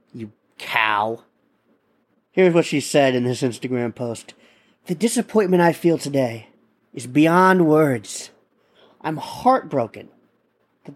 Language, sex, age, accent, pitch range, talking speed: English, male, 40-59, American, 135-195 Hz, 110 wpm